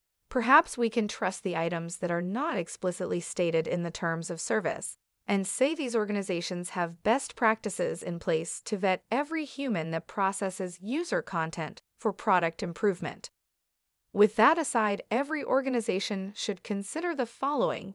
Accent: American